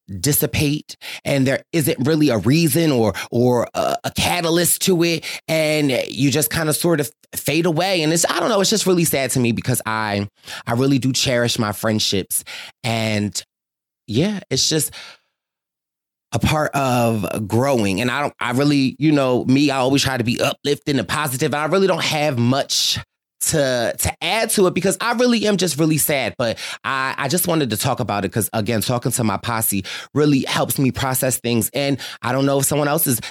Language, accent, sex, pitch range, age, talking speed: English, American, male, 115-155 Hz, 30-49, 200 wpm